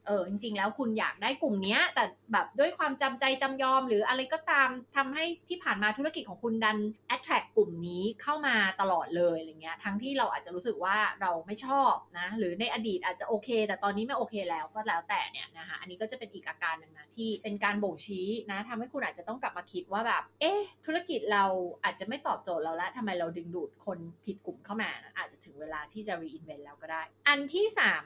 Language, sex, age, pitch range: Thai, female, 20-39, 190-265 Hz